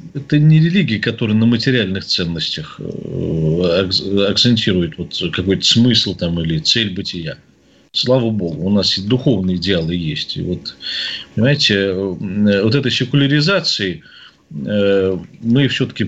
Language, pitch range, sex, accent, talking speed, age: Russian, 100-140 Hz, male, native, 110 wpm, 40-59